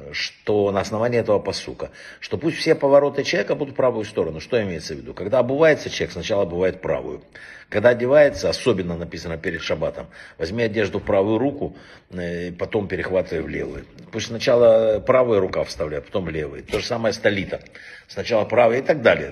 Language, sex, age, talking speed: Russian, male, 60-79, 175 wpm